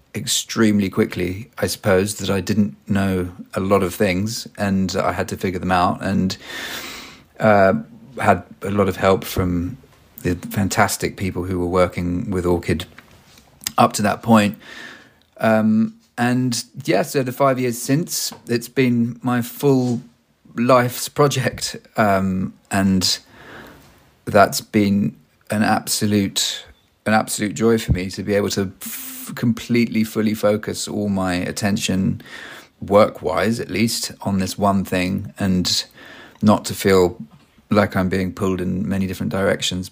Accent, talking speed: British, 145 wpm